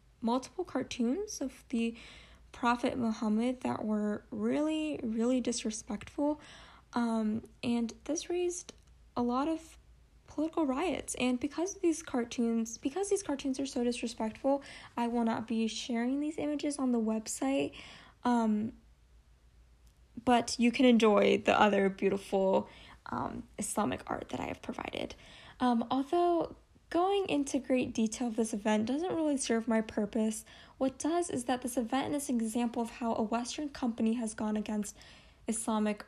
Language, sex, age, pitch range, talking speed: English, female, 10-29, 220-265 Hz, 145 wpm